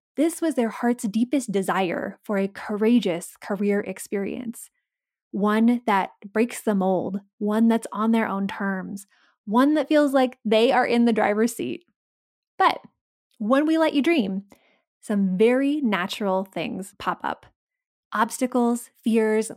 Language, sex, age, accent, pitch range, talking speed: English, female, 20-39, American, 200-265 Hz, 140 wpm